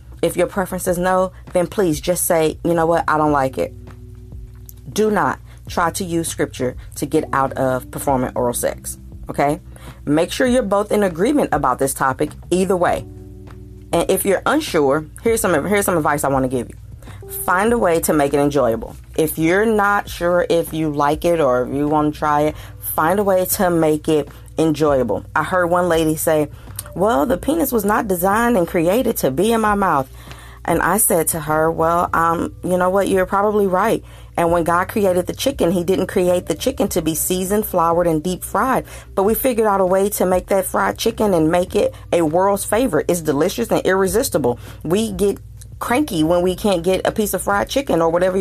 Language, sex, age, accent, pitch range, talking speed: English, female, 40-59, American, 150-200 Hz, 210 wpm